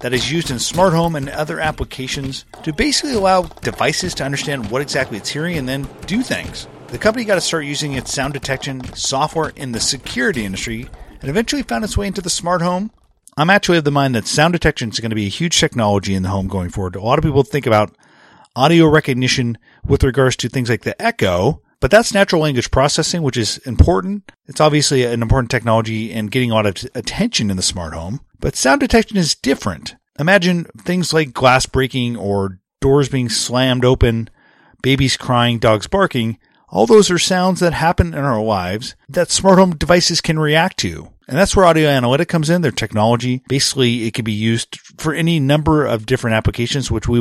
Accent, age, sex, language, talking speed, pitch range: American, 40-59, male, English, 205 wpm, 120-170 Hz